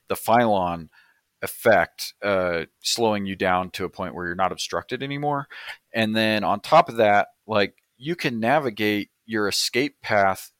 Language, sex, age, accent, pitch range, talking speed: English, male, 30-49, American, 95-115 Hz, 160 wpm